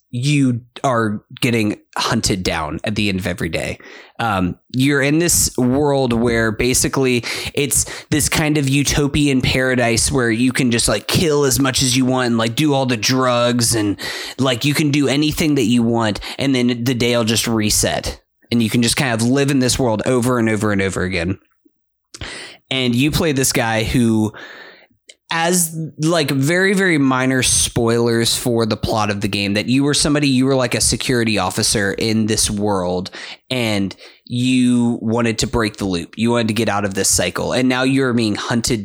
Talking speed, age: 190 wpm, 20-39